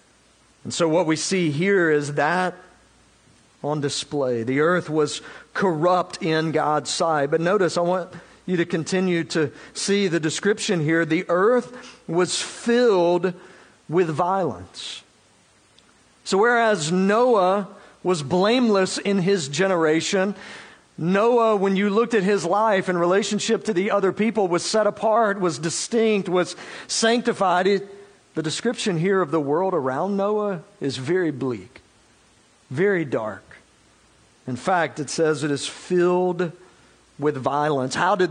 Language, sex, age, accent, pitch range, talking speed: English, male, 50-69, American, 160-205 Hz, 140 wpm